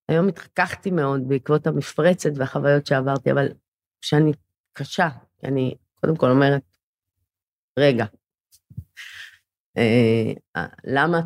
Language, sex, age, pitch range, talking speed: Hebrew, female, 30-49, 130-180 Hz, 90 wpm